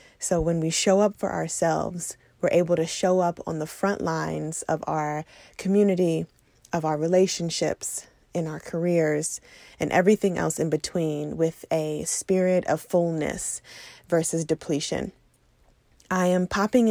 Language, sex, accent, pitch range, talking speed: English, female, American, 160-195 Hz, 140 wpm